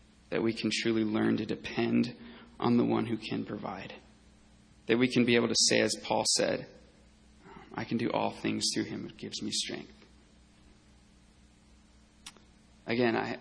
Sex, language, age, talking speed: male, English, 30-49, 155 wpm